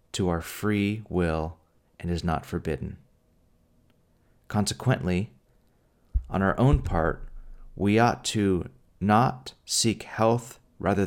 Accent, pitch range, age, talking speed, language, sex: American, 90-105 Hz, 30-49, 110 wpm, English, male